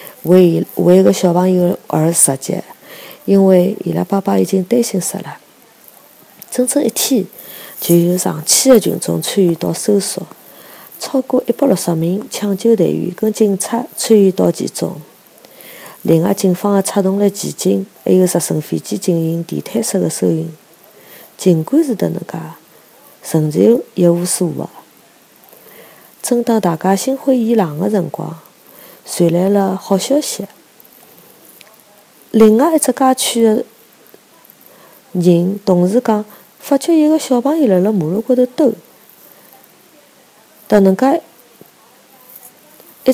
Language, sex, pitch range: Chinese, female, 180-240 Hz